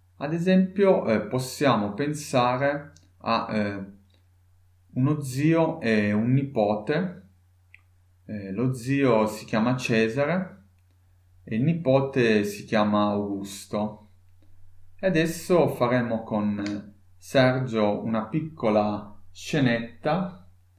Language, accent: Italian, native